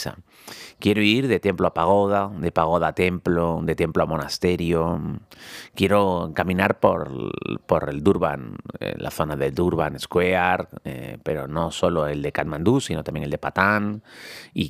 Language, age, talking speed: Spanish, 30-49, 155 wpm